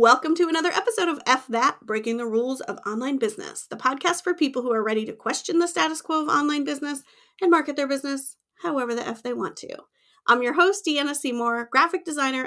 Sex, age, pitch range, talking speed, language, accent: female, 30-49, 225-325 Hz, 215 wpm, English, American